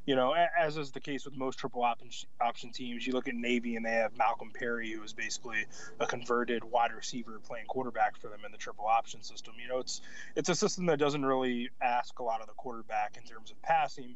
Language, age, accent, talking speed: English, 20-39, American, 235 wpm